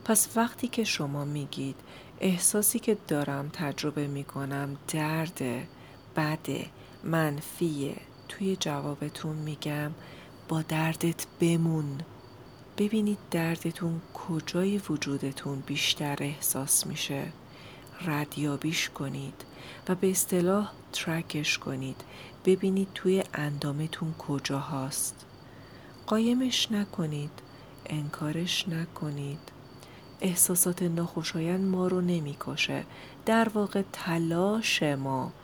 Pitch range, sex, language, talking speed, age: 140-170 Hz, female, Persian, 85 wpm, 40-59